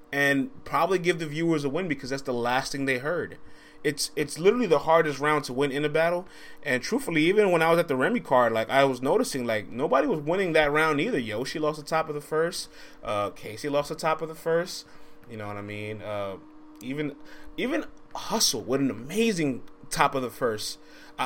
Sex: male